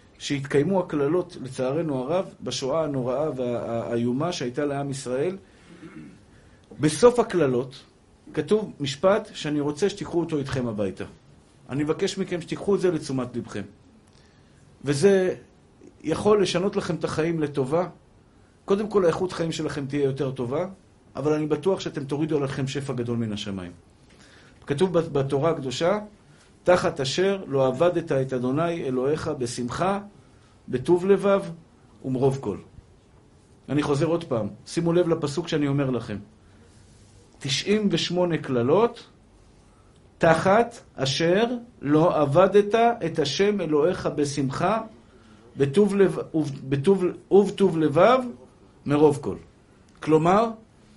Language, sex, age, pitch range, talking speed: Hebrew, male, 50-69, 125-180 Hz, 115 wpm